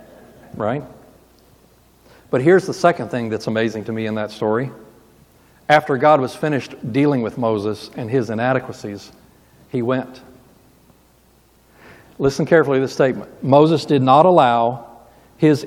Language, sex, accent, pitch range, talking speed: English, male, American, 115-155 Hz, 135 wpm